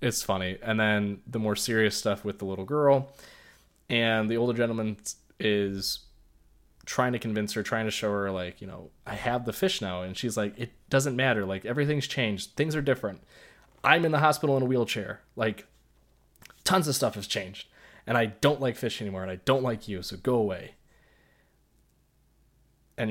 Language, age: English, 20-39